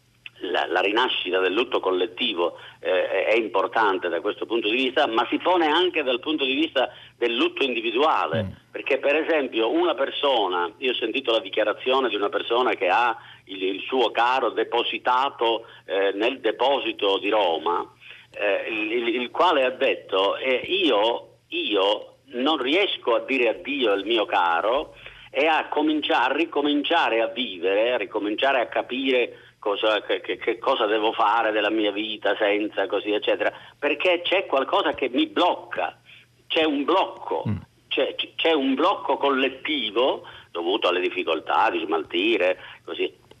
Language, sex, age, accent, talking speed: Italian, male, 50-69, native, 150 wpm